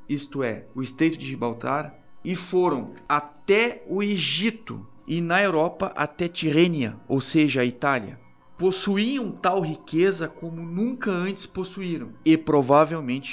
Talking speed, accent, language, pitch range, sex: 130 wpm, Brazilian, Portuguese, 135-165 Hz, male